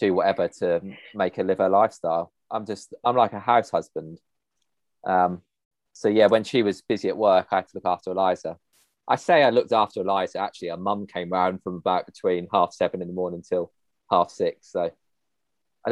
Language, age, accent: English, 20-39, British